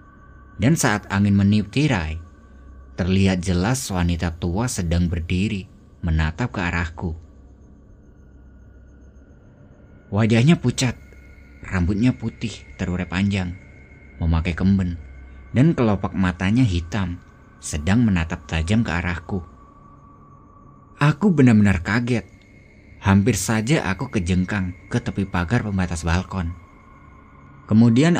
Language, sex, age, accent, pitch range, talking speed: Indonesian, male, 30-49, native, 85-115 Hz, 95 wpm